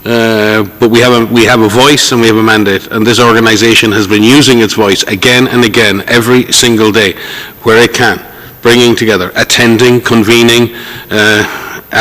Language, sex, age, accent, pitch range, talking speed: English, male, 50-69, Irish, 110-120 Hz, 180 wpm